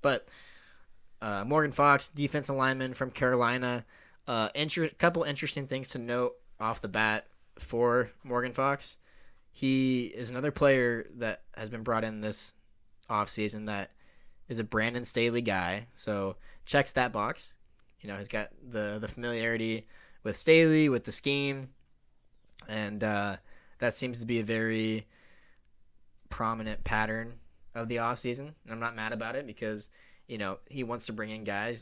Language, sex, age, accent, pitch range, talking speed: English, male, 10-29, American, 105-130 Hz, 160 wpm